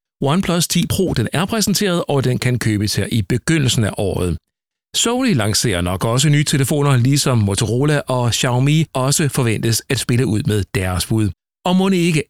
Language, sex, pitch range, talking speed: Danish, male, 110-155 Hz, 175 wpm